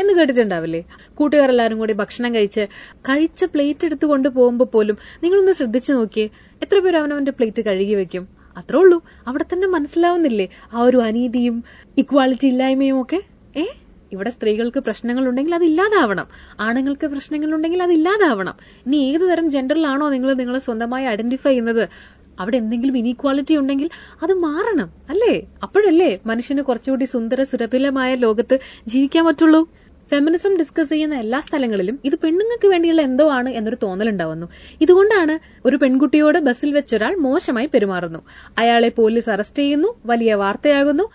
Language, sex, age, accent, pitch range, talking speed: Malayalam, female, 20-39, native, 235-320 Hz, 130 wpm